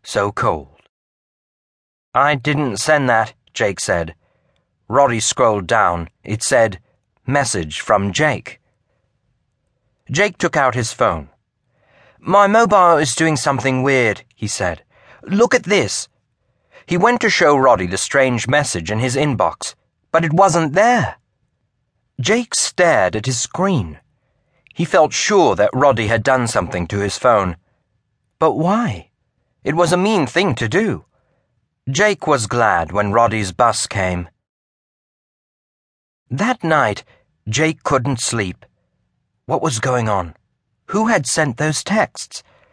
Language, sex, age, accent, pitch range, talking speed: English, male, 40-59, British, 110-155 Hz, 130 wpm